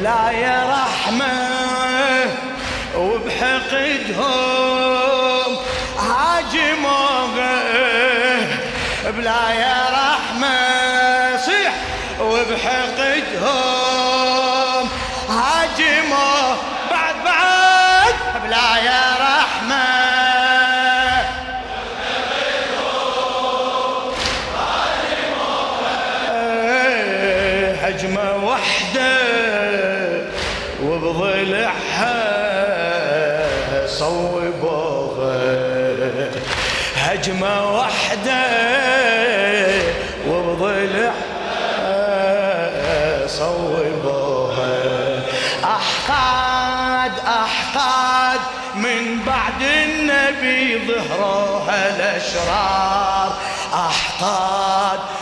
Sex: male